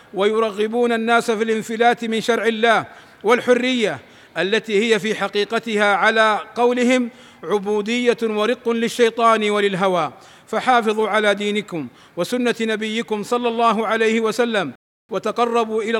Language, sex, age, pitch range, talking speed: Arabic, male, 50-69, 205-225 Hz, 110 wpm